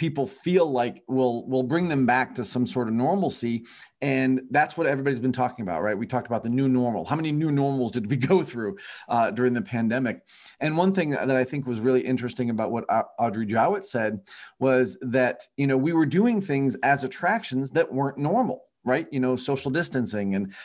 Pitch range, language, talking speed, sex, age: 125-155 Hz, English, 210 wpm, male, 40-59